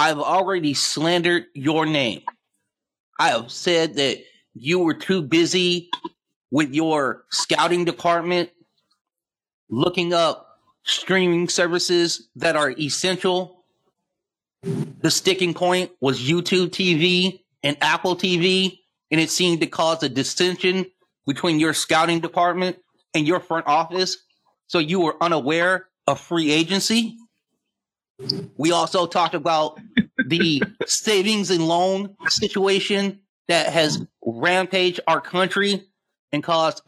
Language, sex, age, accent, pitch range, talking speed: English, male, 30-49, American, 160-185 Hz, 115 wpm